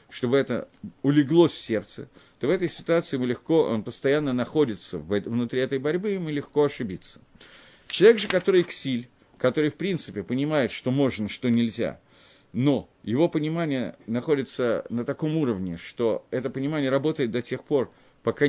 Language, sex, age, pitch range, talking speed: Russian, male, 50-69, 115-150 Hz, 155 wpm